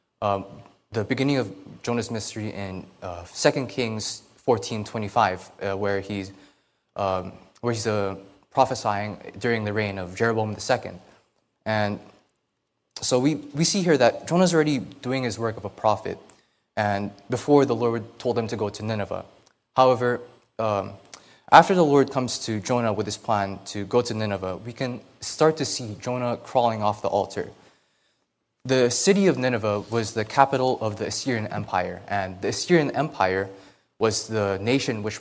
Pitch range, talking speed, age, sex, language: 100-130 Hz, 160 wpm, 20-39, male, English